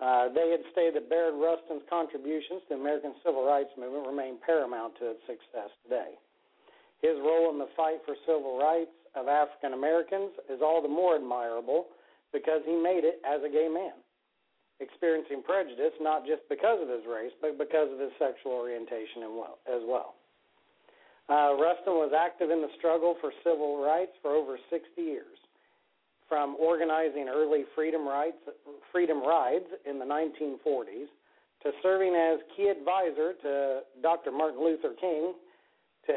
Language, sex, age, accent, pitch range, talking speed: English, male, 50-69, American, 145-180 Hz, 160 wpm